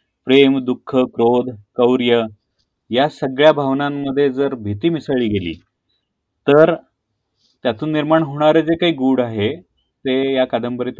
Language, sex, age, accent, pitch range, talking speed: Marathi, male, 30-49, native, 105-130 Hz, 120 wpm